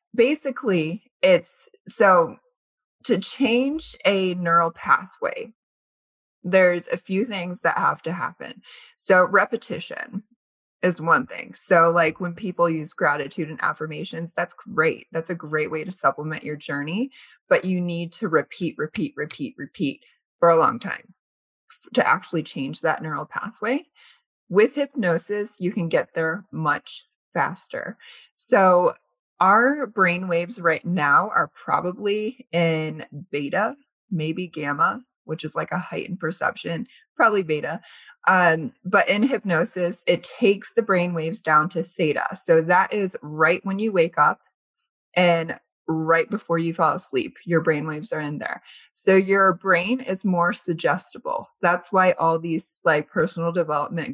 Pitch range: 165-220 Hz